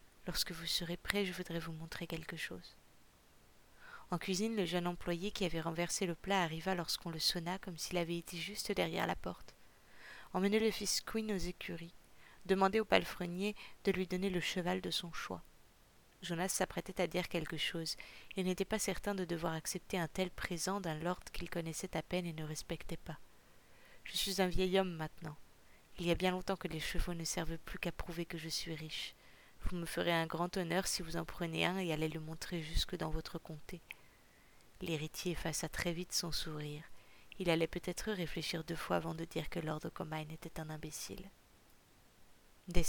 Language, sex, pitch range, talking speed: French, female, 165-185 Hz, 195 wpm